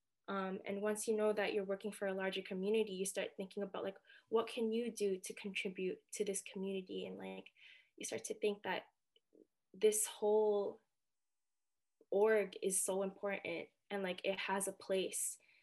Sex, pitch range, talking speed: female, 190-210 Hz, 175 wpm